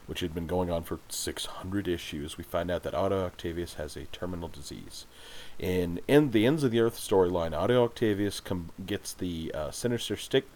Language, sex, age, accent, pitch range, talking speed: English, male, 40-59, American, 90-110 Hz, 200 wpm